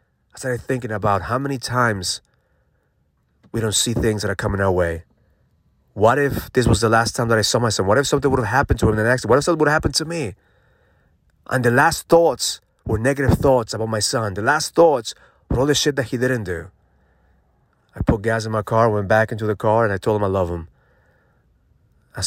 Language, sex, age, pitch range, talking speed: English, male, 30-49, 100-120 Hz, 230 wpm